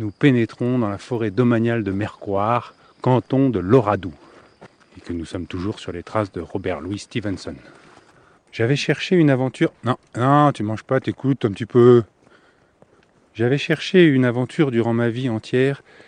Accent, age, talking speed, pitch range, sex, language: French, 30-49, 165 wpm, 110-135 Hz, male, French